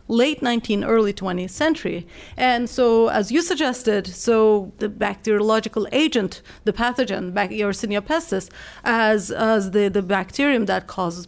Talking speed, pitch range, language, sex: 140 wpm, 210-260 Hz, English, female